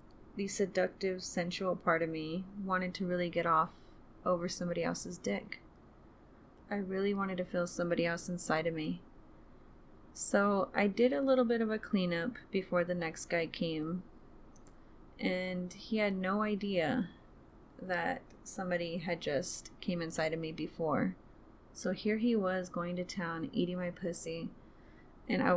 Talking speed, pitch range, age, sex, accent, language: 155 wpm, 175-215 Hz, 30-49, female, American, English